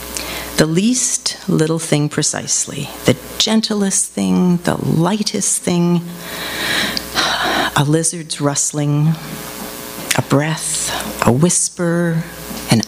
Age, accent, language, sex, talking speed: 50-69, American, English, female, 90 wpm